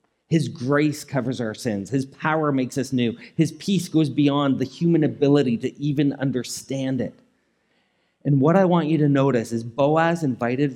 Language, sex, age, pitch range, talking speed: English, male, 30-49, 120-160 Hz, 175 wpm